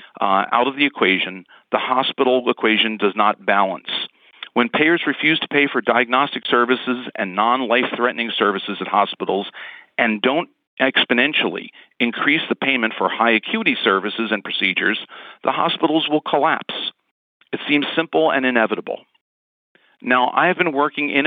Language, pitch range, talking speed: English, 110-145 Hz, 140 wpm